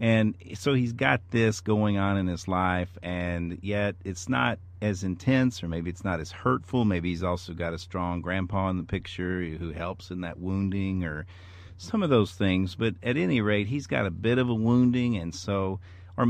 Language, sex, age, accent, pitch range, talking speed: English, male, 40-59, American, 90-105 Hz, 205 wpm